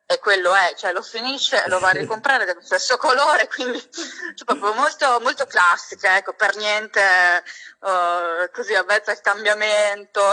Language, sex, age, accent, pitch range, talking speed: Italian, female, 20-39, native, 190-255 Hz, 165 wpm